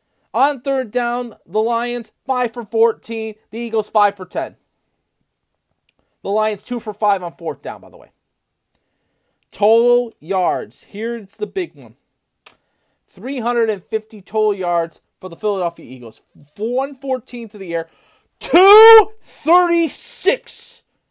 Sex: male